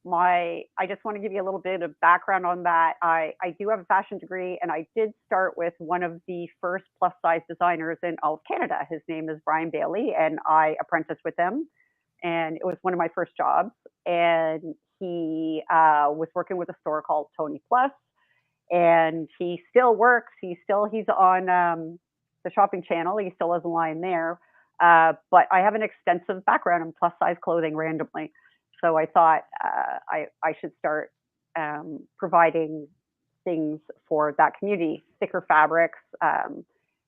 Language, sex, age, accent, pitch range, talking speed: English, female, 40-59, American, 160-185 Hz, 185 wpm